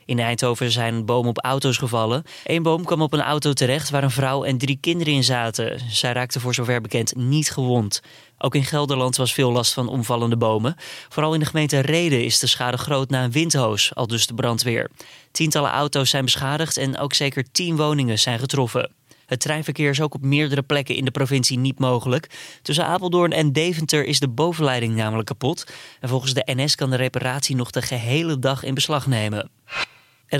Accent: Dutch